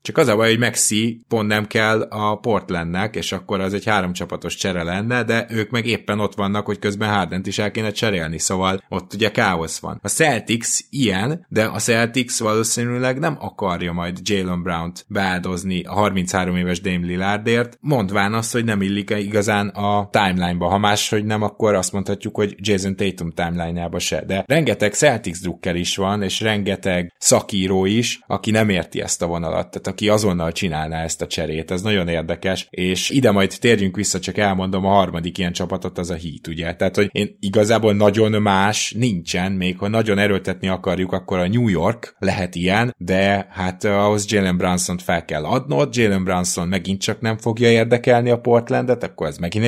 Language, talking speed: Hungarian, 185 wpm